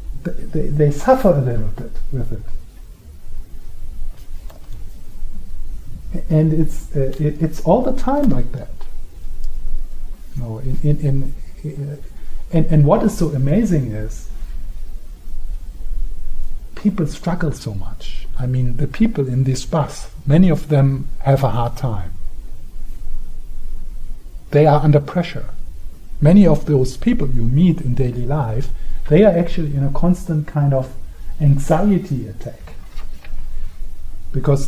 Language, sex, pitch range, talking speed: English, male, 105-155 Hz, 125 wpm